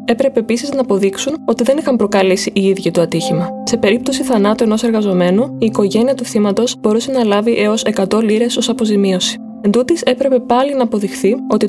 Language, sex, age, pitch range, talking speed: Greek, female, 20-39, 195-245 Hz, 185 wpm